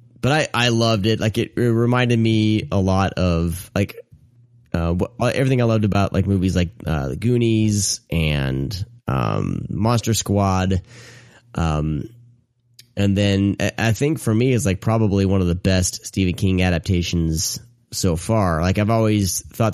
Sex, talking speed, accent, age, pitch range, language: male, 160 wpm, American, 30-49, 95-120 Hz, English